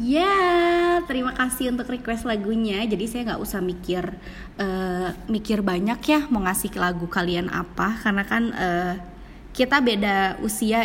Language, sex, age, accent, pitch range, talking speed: Indonesian, female, 20-39, native, 195-265 Hz, 150 wpm